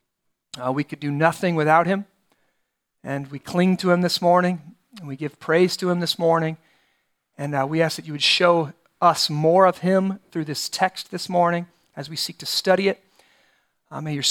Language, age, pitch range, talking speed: English, 40-59, 160-190 Hz, 200 wpm